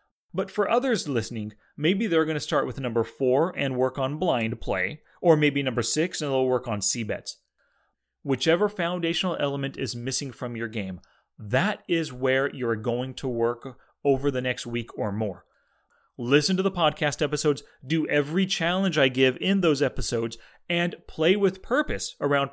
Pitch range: 120-165 Hz